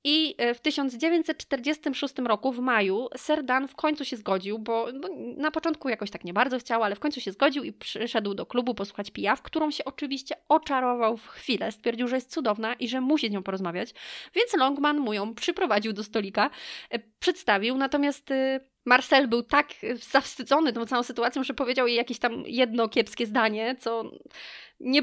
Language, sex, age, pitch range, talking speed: Polish, female, 20-39, 215-275 Hz, 175 wpm